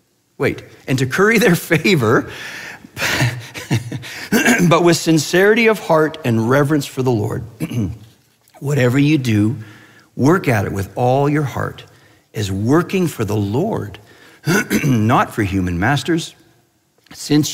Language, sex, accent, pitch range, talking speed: English, male, American, 115-160 Hz, 125 wpm